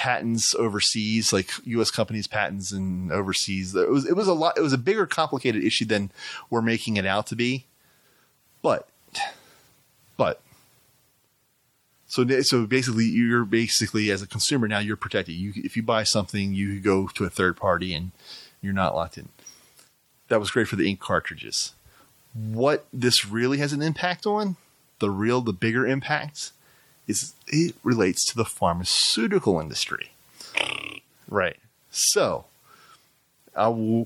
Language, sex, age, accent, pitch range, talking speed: English, male, 30-49, American, 100-130 Hz, 150 wpm